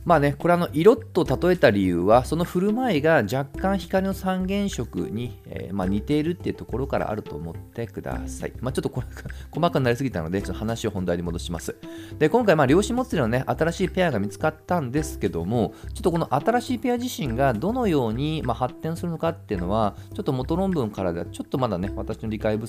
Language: Japanese